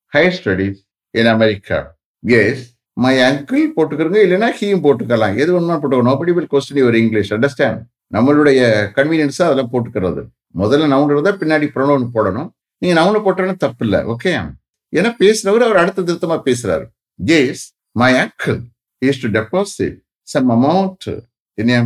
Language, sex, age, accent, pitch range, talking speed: English, male, 60-79, Indian, 105-155 Hz, 85 wpm